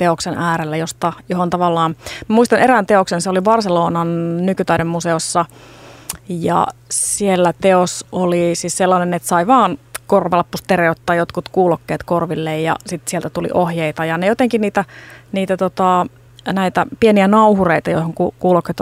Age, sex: 30-49, female